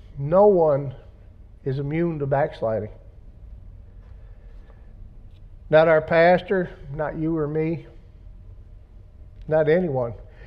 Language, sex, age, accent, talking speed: English, male, 50-69, American, 85 wpm